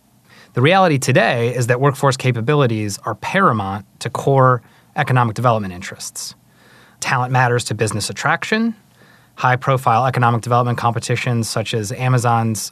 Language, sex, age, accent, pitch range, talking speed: English, male, 30-49, American, 115-145 Hz, 125 wpm